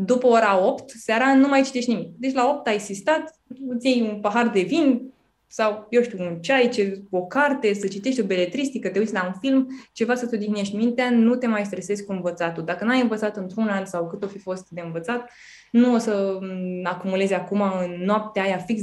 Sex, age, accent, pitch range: female, 20-39, native, 180-225 Hz